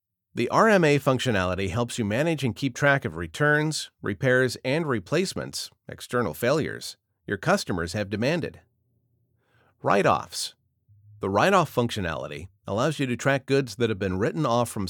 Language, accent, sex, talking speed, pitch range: English, American, male, 140 wpm, 100-145 Hz